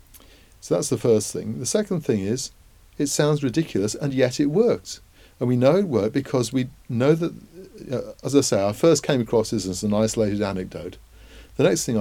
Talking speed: 200 wpm